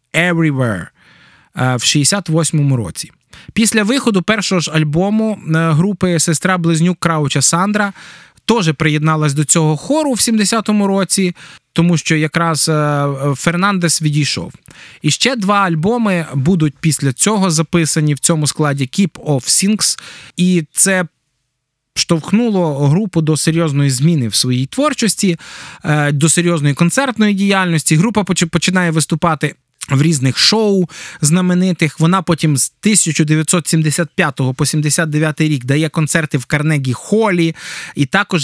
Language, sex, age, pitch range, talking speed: Ukrainian, male, 20-39, 150-185 Hz, 115 wpm